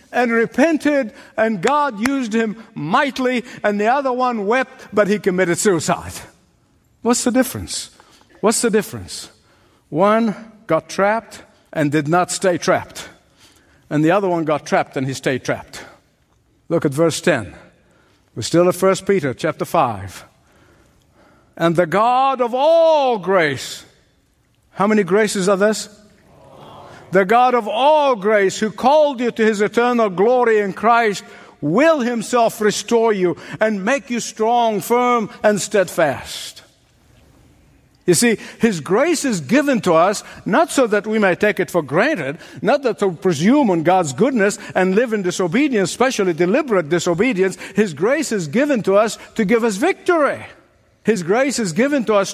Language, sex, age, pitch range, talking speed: English, male, 60-79, 185-245 Hz, 155 wpm